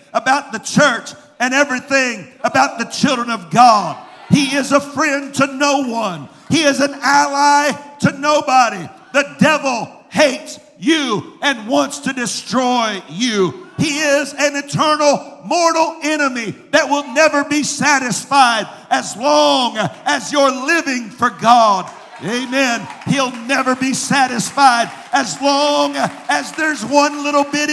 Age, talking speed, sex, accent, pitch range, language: 50-69, 135 wpm, male, American, 245-290 Hz, English